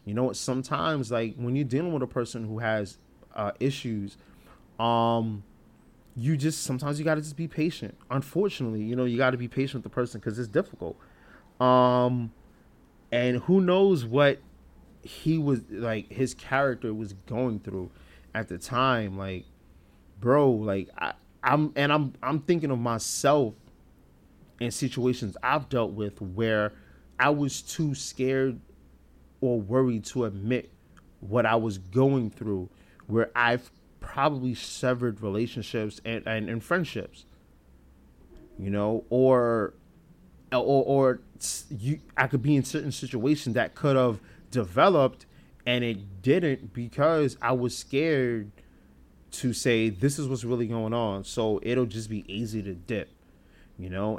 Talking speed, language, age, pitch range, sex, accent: 145 wpm, English, 20-39, 105-135 Hz, male, American